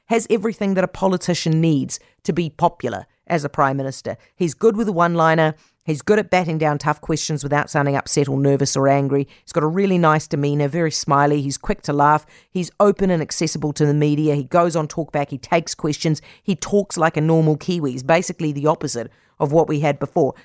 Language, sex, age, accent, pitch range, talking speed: English, female, 40-59, Australian, 140-180 Hz, 215 wpm